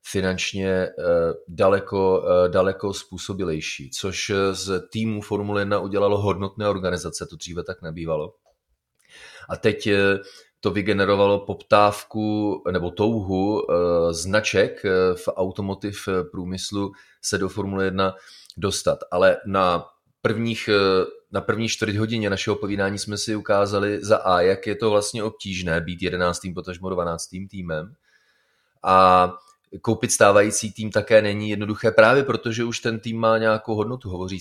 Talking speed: 125 wpm